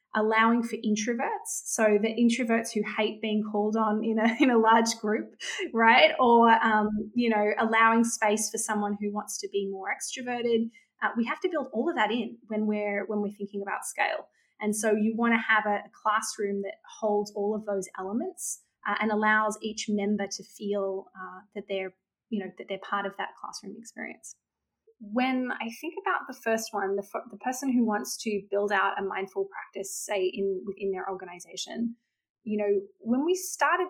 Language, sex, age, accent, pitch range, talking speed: English, female, 20-39, Australian, 200-235 Hz, 190 wpm